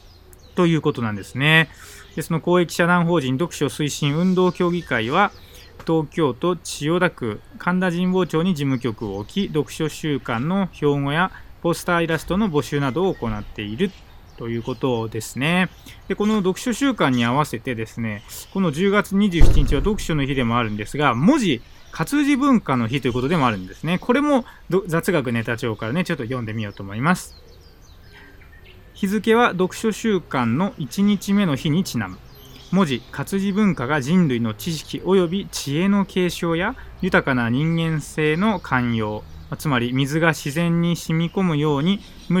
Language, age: Japanese, 20-39